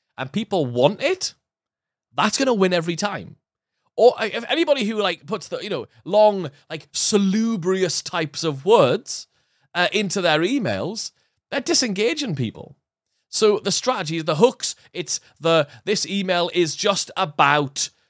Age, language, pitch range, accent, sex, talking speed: 30-49, English, 140-195 Hz, British, male, 145 wpm